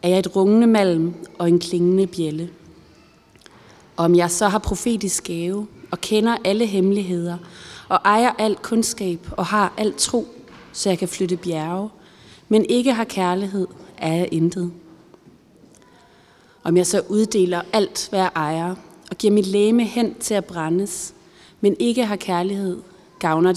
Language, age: Danish, 30-49